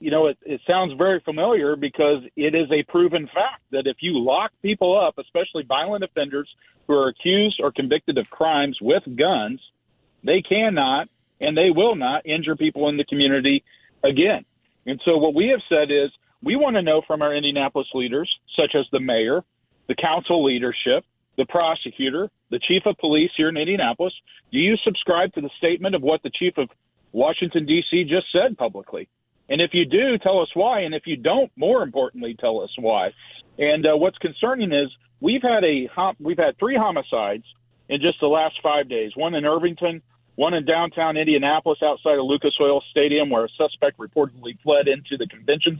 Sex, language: male, English